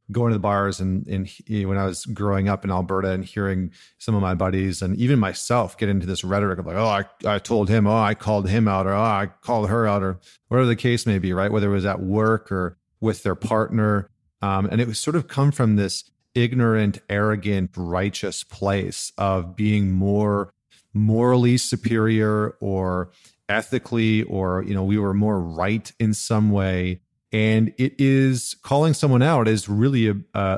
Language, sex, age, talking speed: English, male, 40-59, 190 wpm